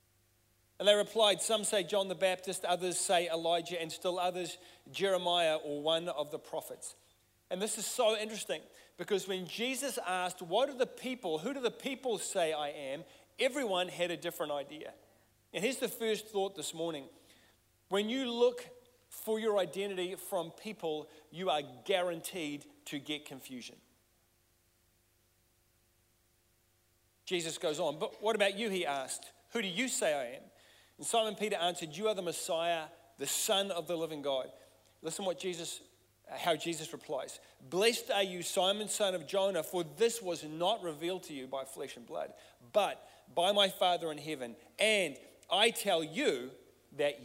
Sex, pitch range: male, 150-205 Hz